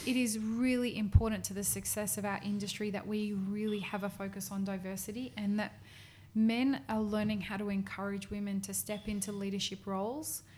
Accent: Australian